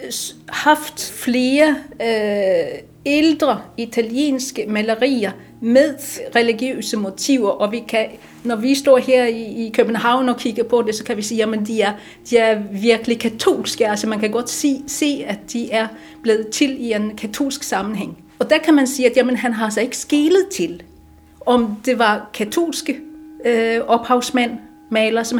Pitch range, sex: 220-265 Hz, female